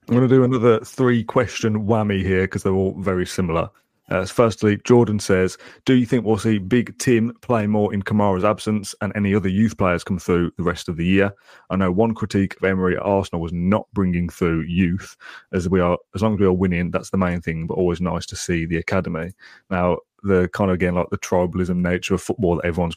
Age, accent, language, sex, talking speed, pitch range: 30-49, British, English, male, 225 wpm, 90-105 Hz